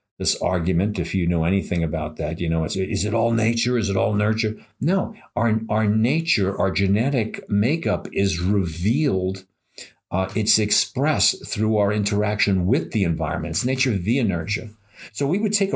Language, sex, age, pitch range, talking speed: English, male, 50-69, 95-125 Hz, 170 wpm